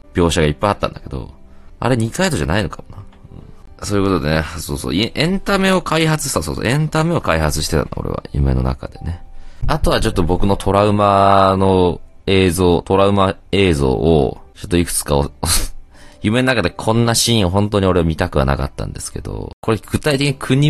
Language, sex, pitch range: Japanese, male, 80-115 Hz